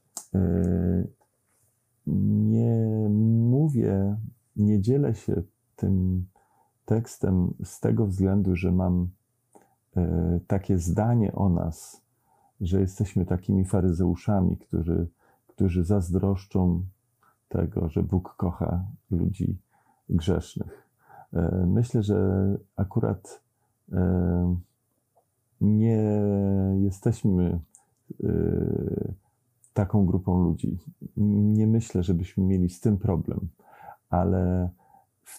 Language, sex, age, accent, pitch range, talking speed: Polish, male, 40-59, native, 90-110 Hz, 80 wpm